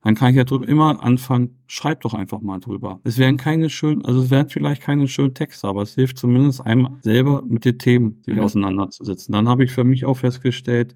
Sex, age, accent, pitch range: male, 40-59, German, 110-130 Hz